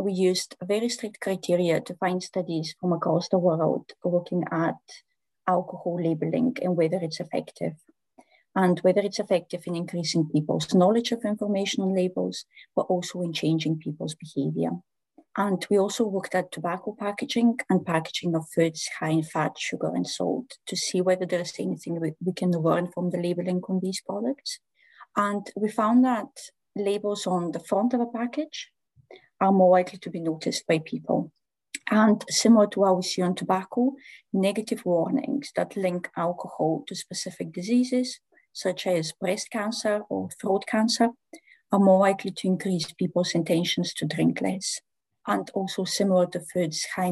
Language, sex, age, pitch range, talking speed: English, female, 30-49, 170-205 Hz, 165 wpm